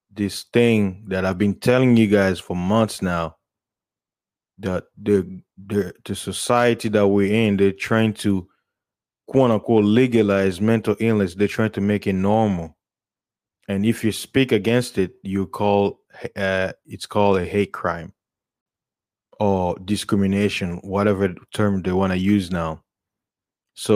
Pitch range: 95-110 Hz